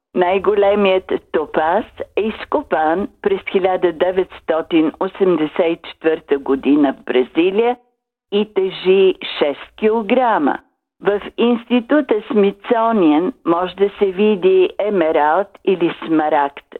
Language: Bulgarian